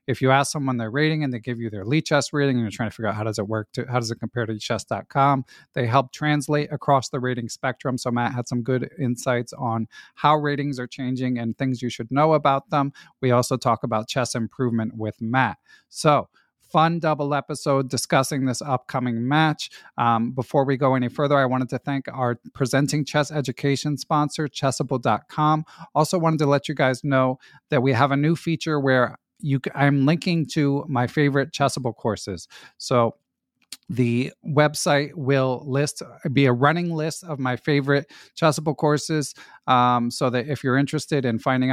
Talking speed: 190 wpm